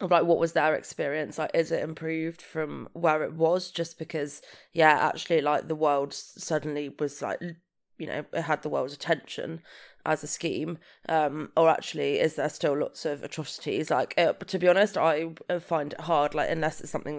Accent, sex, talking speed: British, female, 190 wpm